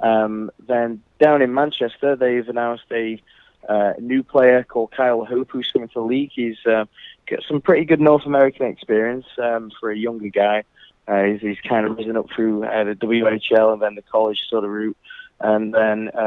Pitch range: 110-125 Hz